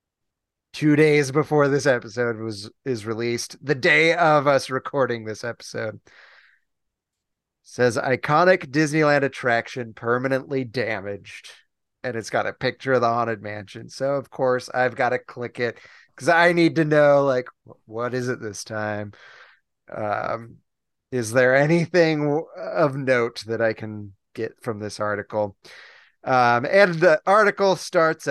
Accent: American